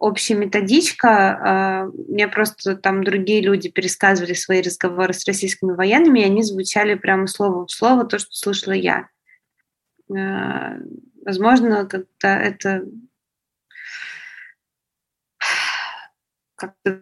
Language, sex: Russian, female